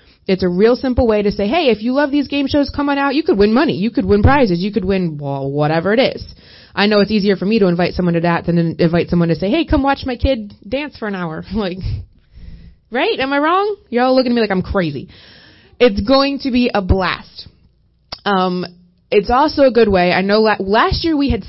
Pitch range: 175-235 Hz